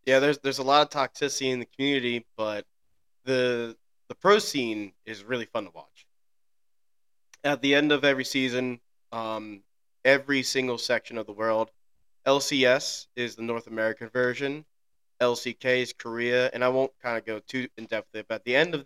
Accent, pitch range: American, 110-135 Hz